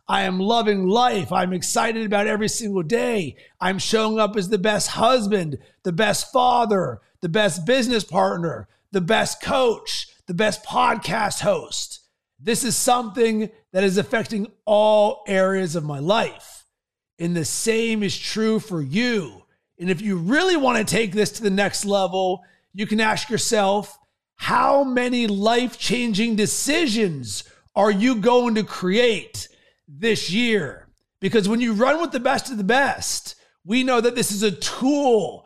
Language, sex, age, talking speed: English, male, 30-49, 155 wpm